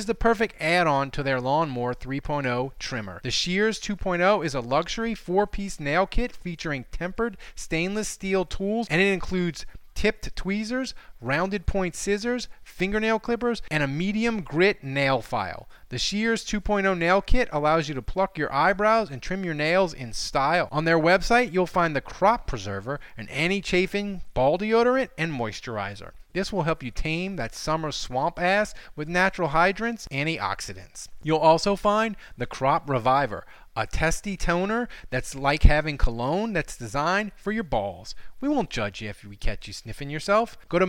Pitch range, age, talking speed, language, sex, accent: 145-210 Hz, 30-49, 170 wpm, English, male, American